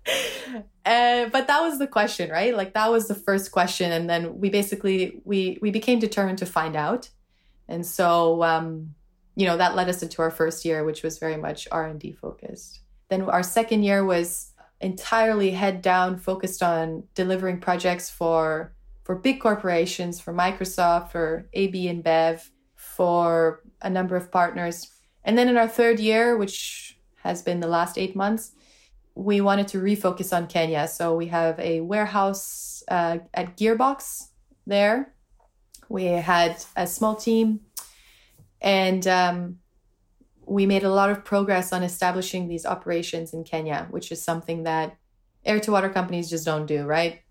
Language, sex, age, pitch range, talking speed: English, female, 20-39, 165-200 Hz, 165 wpm